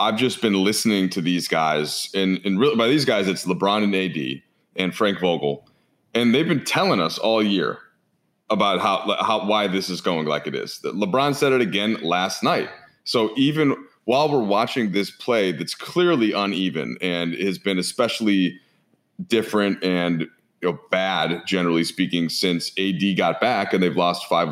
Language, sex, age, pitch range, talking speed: English, male, 30-49, 95-110 Hz, 170 wpm